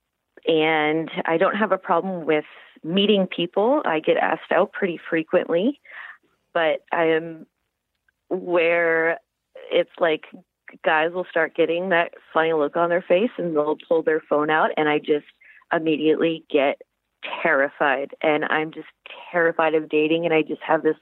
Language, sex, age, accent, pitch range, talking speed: English, female, 30-49, American, 140-170 Hz, 155 wpm